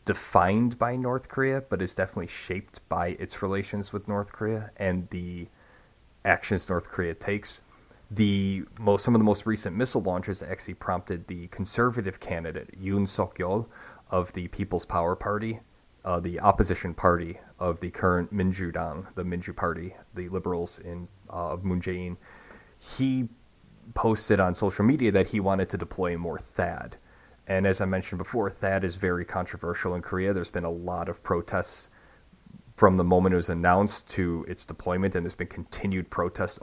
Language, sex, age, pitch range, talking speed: English, male, 30-49, 90-105 Hz, 170 wpm